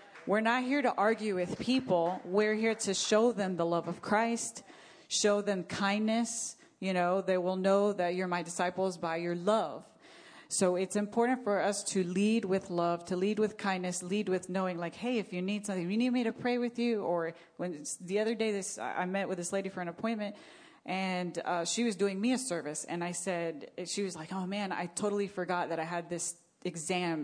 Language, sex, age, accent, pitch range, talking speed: English, female, 40-59, American, 180-215 Hz, 215 wpm